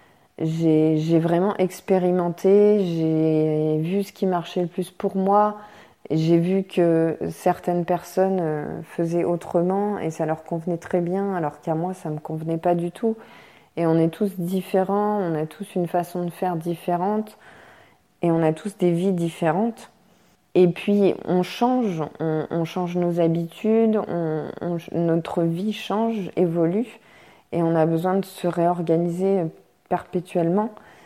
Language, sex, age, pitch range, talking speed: French, female, 20-39, 160-190 Hz, 155 wpm